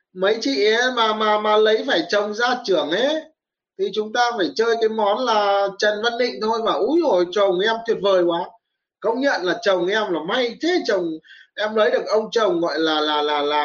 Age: 20-39